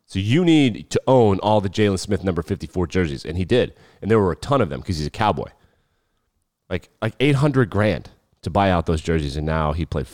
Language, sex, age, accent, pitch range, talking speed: English, male, 30-49, American, 95-130 Hz, 235 wpm